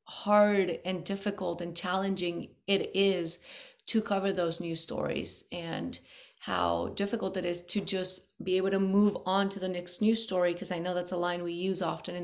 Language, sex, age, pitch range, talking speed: English, female, 30-49, 180-205 Hz, 190 wpm